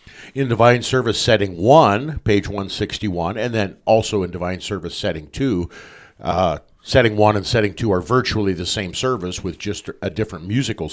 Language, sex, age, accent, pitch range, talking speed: English, male, 50-69, American, 95-120 Hz, 165 wpm